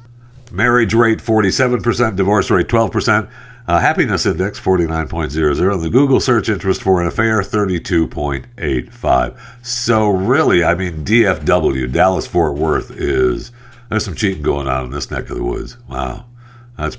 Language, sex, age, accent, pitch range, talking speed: English, male, 60-79, American, 80-120 Hz, 140 wpm